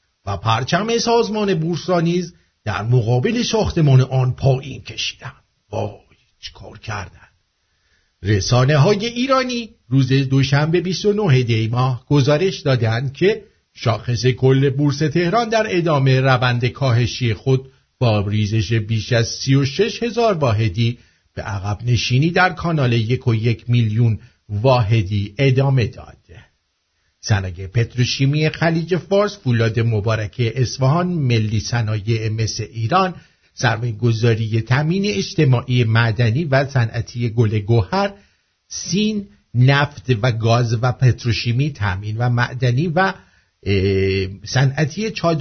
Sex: male